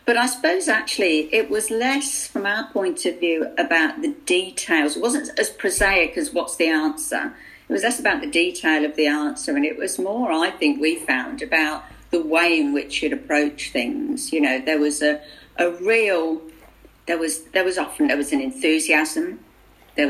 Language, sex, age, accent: English, female, 50-69, British